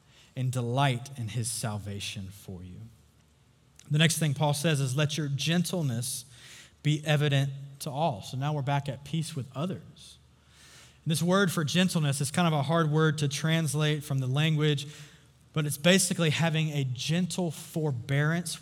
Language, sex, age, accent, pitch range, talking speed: English, male, 20-39, American, 125-160 Hz, 165 wpm